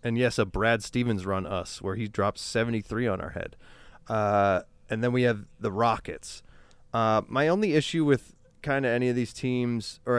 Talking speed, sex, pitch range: 195 wpm, male, 105-125 Hz